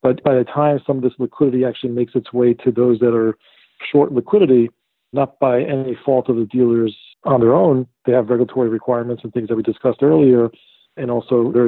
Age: 40-59